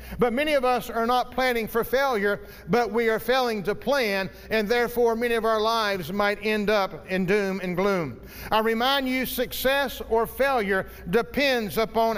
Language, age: English, 50-69